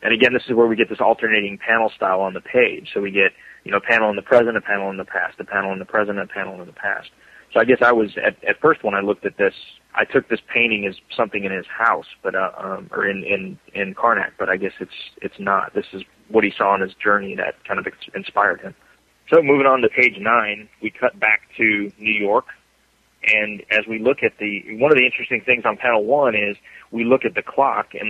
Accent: American